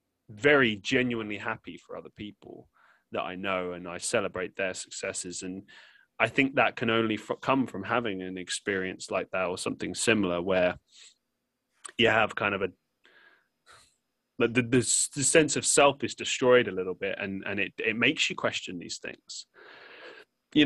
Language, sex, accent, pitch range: English, male, British, 95-120 Hz